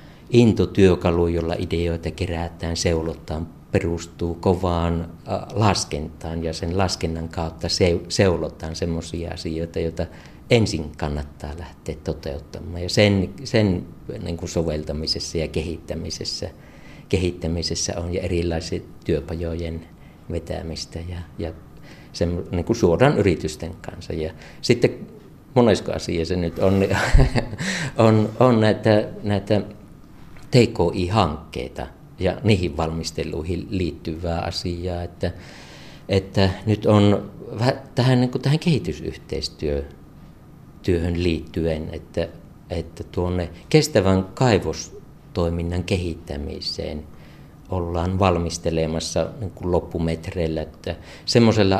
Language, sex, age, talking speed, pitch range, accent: Finnish, male, 50-69, 95 wpm, 80-100 Hz, native